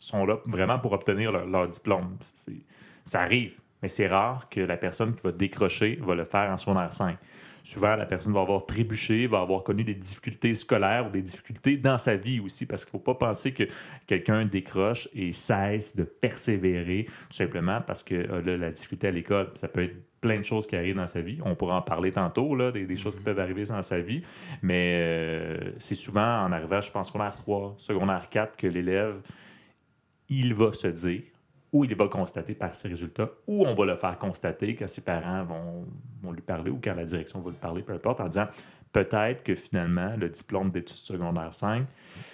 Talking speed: 210 wpm